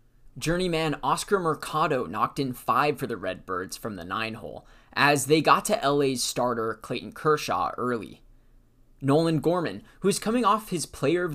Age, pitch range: 20-39, 120-155 Hz